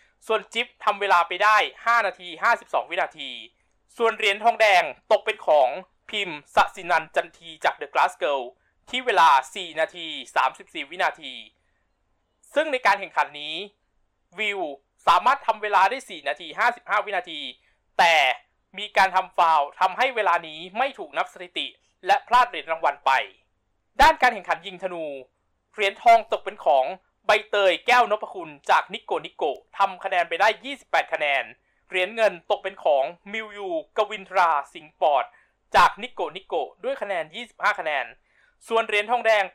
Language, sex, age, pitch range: Thai, male, 20-39, 175-230 Hz